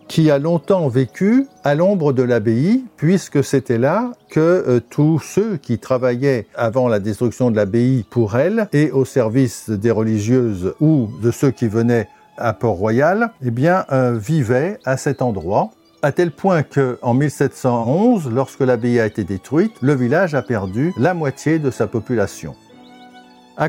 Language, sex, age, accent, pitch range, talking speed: French, male, 50-69, French, 115-150 Hz, 160 wpm